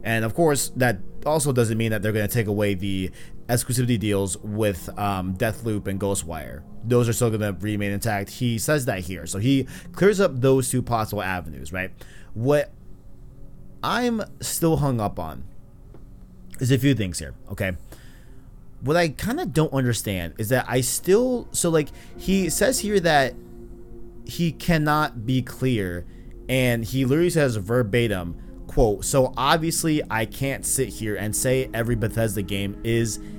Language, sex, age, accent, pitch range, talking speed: English, male, 30-49, American, 100-135 Hz, 165 wpm